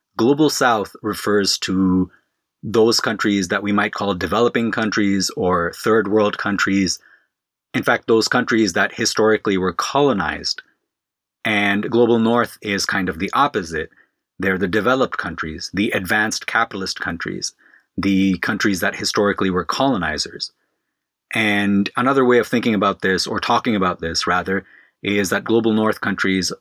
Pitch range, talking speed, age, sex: 95-110 Hz, 140 wpm, 30-49, male